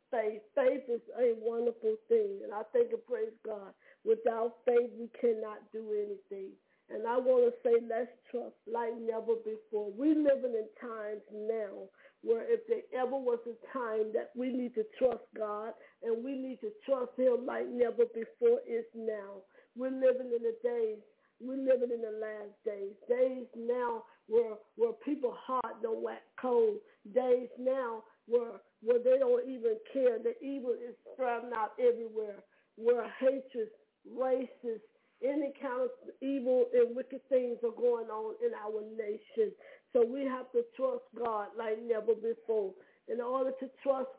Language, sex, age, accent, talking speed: English, female, 50-69, American, 165 wpm